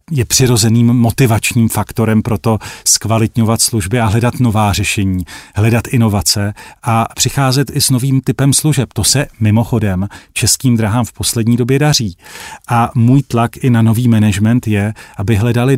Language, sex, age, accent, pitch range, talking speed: Czech, male, 40-59, native, 110-125 Hz, 150 wpm